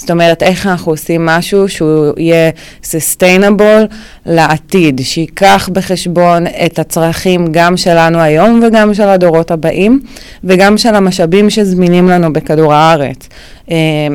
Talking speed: 125 wpm